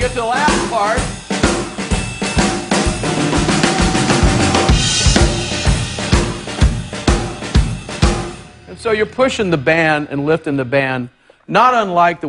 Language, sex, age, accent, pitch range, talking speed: English, male, 50-69, American, 110-135 Hz, 90 wpm